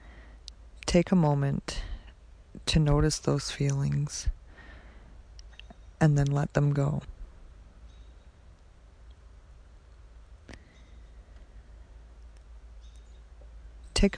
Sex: female